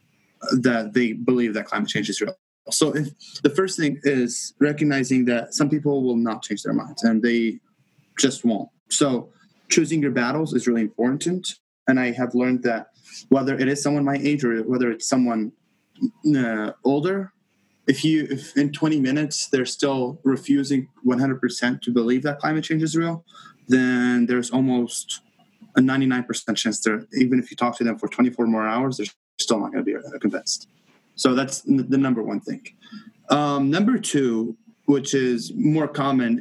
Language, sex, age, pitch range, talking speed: English, male, 20-39, 120-145 Hz, 175 wpm